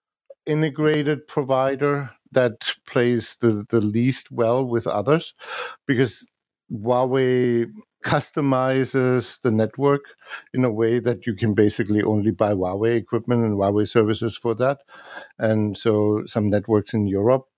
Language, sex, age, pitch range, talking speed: English, male, 60-79, 110-135 Hz, 125 wpm